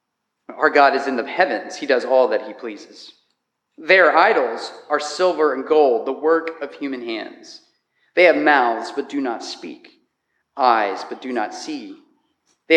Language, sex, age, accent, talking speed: English, male, 40-59, American, 170 wpm